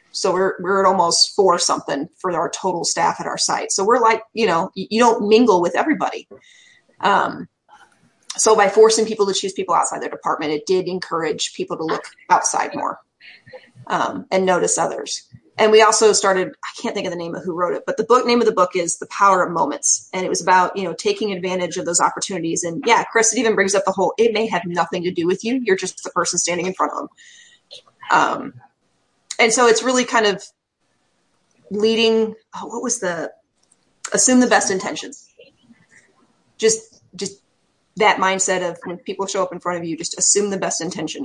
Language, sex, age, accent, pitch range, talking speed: English, female, 20-39, American, 180-225 Hz, 210 wpm